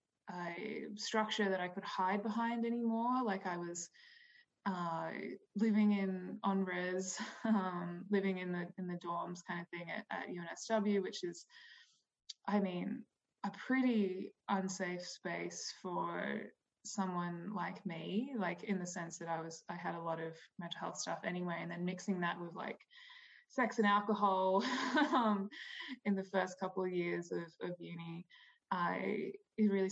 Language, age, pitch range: English, 20-39, 175-215 Hz